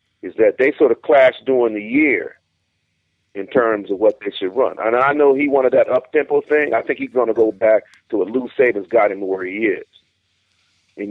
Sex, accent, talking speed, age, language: male, American, 220 wpm, 40-59, English